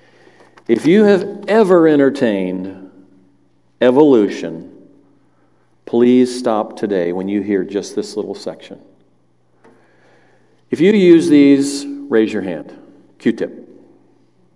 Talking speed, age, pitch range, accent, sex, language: 100 wpm, 50-69, 115-180 Hz, American, male, English